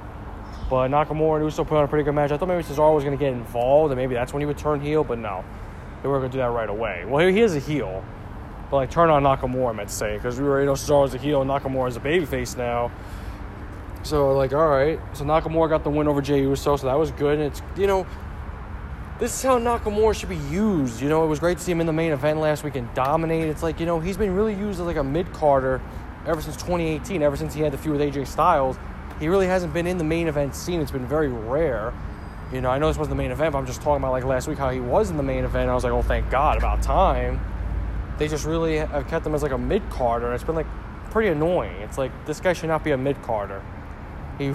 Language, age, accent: English, 20-39, American